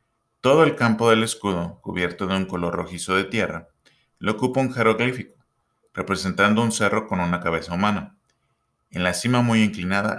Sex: male